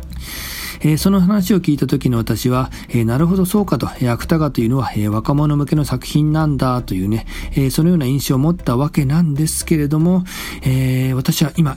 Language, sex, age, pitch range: Japanese, male, 40-59, 120-155 Hz